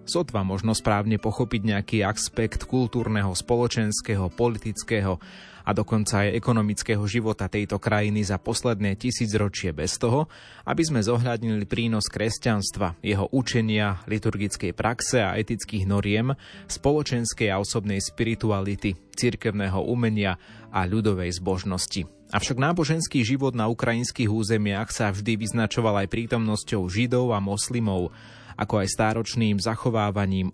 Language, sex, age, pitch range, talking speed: Slovak, male, 30-49, 100-115 Hz, 120 wpm